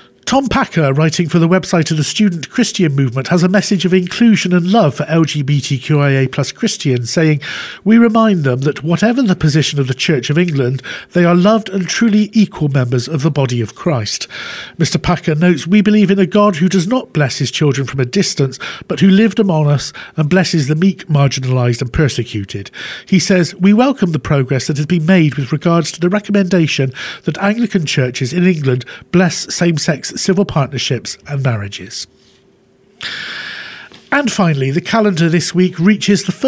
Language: English